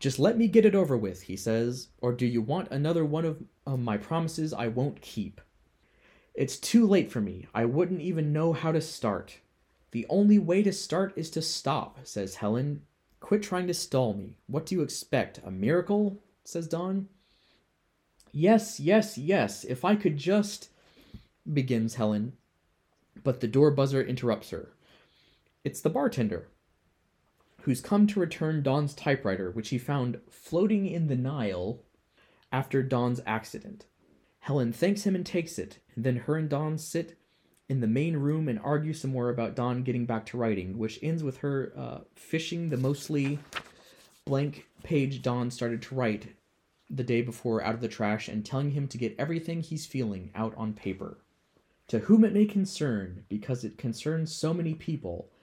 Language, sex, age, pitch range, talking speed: English, male, 20-39, 115-165 Hz, 175 wpm